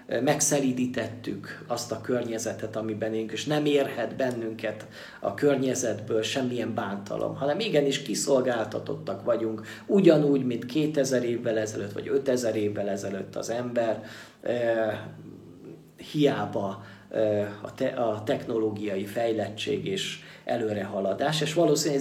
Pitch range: 115-145 Hz